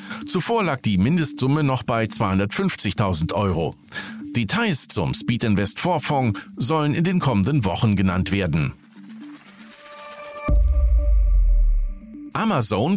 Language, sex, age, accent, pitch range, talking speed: German, male, 40-59, German, 110-165 Hz, 95 wpm